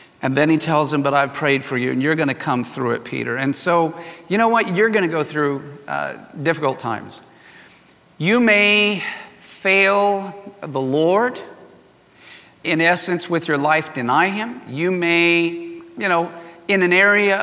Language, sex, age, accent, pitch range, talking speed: English, male, 50-69, American, 145-195 Hz, 170 wpm